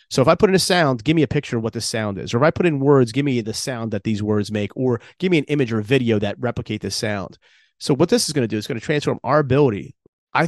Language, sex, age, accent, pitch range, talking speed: English, male, 30-49, American, 115-145 Hz, 320 wpm